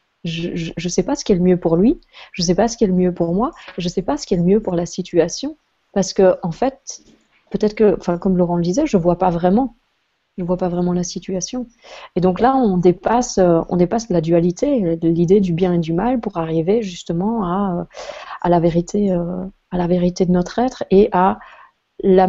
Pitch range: 175-200 Hz